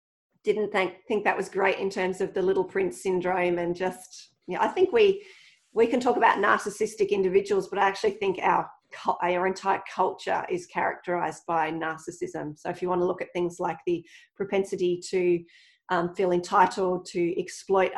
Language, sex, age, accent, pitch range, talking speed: English, female, 30-49, Australian, 175-210 Hz, 185 wpm